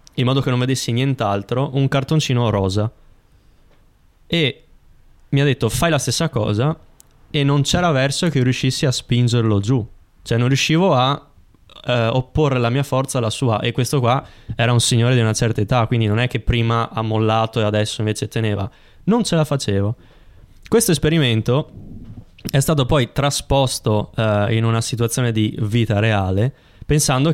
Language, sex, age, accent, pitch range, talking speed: Italian, male, 20-39, native, 110-140 Hz, 160 wpm